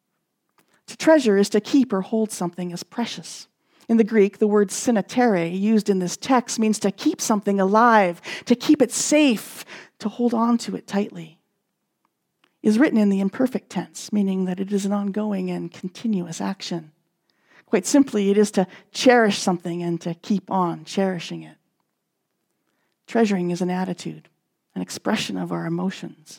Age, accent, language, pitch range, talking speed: 40-59, American, English, 175-215 Hz, 165 wpm